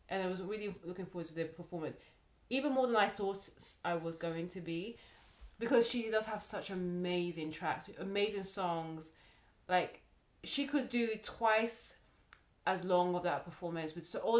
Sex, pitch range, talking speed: female, 170-215 Hz, 165 wpm